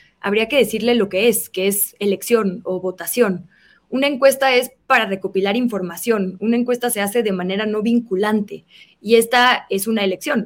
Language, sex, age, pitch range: Spanish, female, 20-39, 195-230 Hz